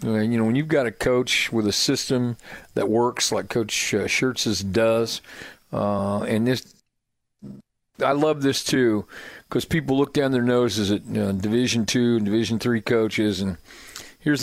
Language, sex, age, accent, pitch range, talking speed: English, male, 50-69, American, 110-130 Hz, 160 wpm